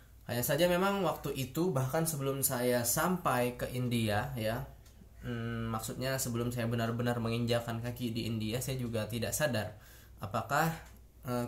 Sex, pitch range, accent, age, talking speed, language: male, 110-125 Hz, native, 20-39, 140 wpm, Indonesian